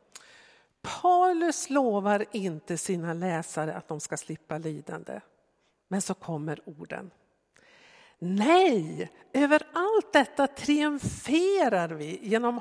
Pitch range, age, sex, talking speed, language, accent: 170-245 Hz, 60-79, female, 100 wpm, Swedish, native